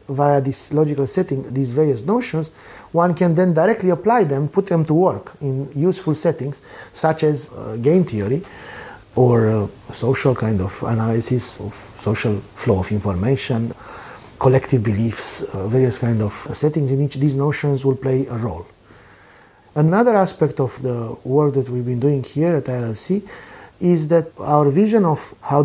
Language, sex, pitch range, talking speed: English, male, 115-155 Hz, 160 wpm